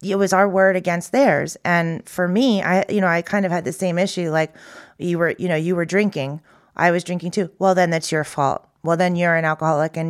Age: 30-49